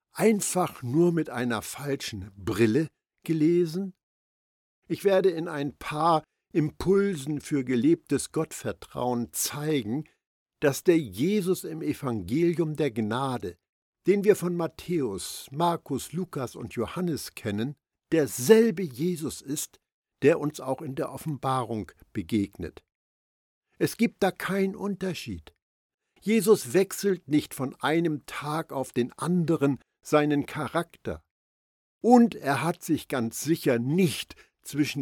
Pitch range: 120-175 Hz